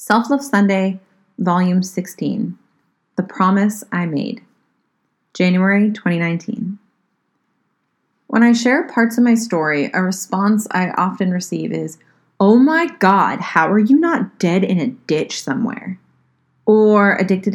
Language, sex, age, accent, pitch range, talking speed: English, female, 30-49, American, 180-215 Hz, 130 wpm